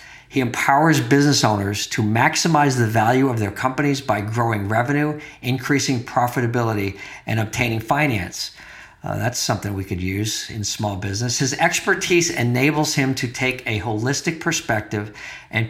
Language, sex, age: English, male, 50-69